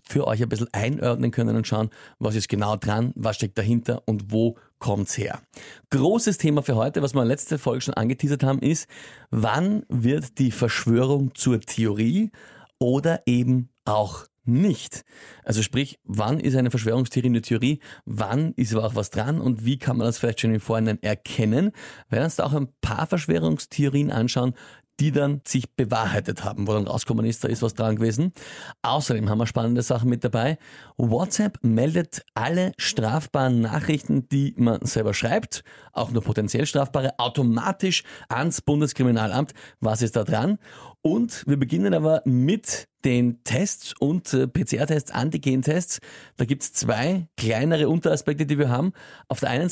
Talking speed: 170 wpm